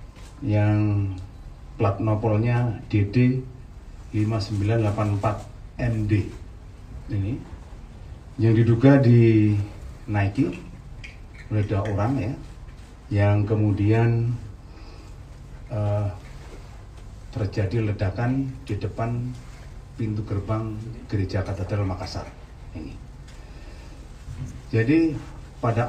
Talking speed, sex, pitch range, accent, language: 65 wpm, male, 100-115 Hz, native, Indonesian